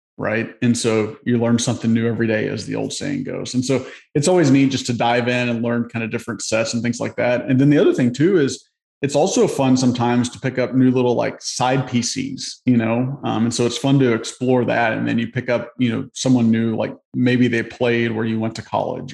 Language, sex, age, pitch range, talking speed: English, male, 30-49, 115-130 Hz, 250 wpm